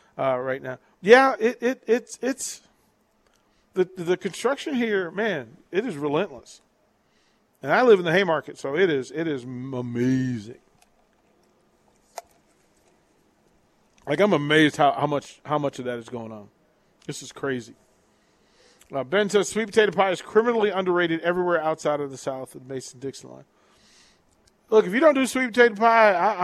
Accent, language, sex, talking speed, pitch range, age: American, English, male, 160 wpm, 140-195 Hz, 40-59